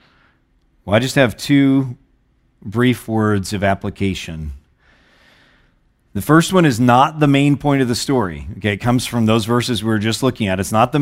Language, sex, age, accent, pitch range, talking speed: English, male, 40-59, American, 105-130 Hz, 185 wpm